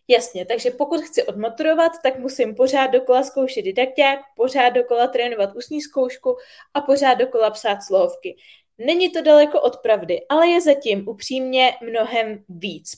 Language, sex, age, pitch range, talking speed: Czech, female, 20-39, 225-295 Hz, 150 wpm